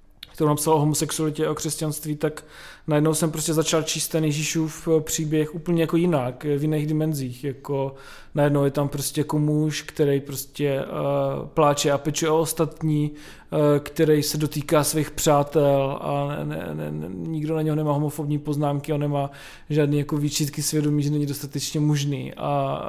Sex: male